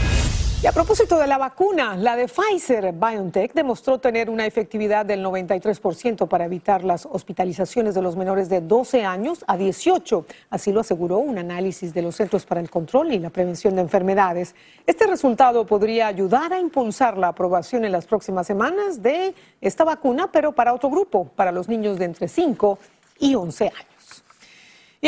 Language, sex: Spanish, female